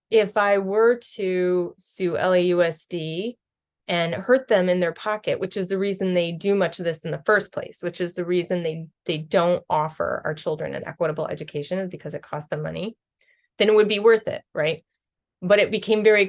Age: 20-39